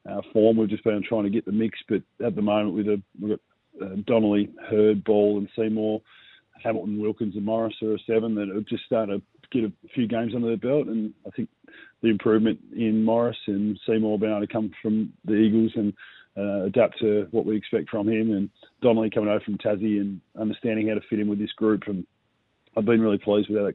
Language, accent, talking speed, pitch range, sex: English, Australian, 220 wpm, 105-115 Hz, male